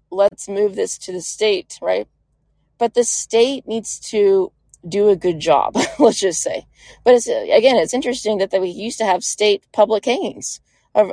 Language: English